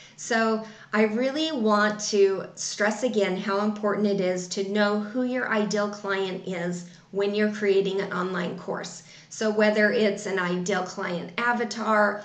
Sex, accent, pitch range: female, American, 190-225 Hz